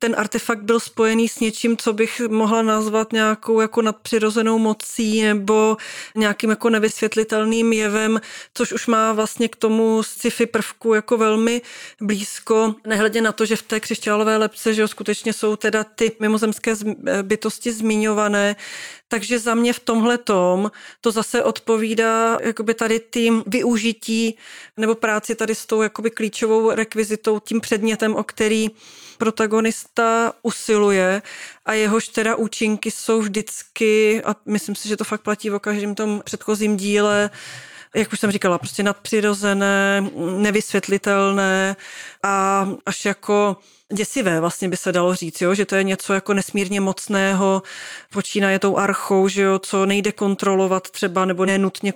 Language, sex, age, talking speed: Czech, female, 30-49, 145 wpm